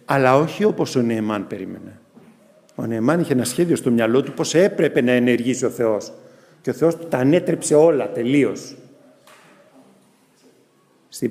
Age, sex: 50-69, male